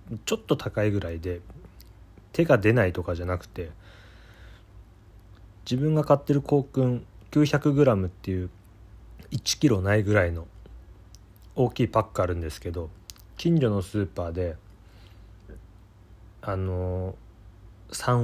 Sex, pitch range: male, 95-115 Hz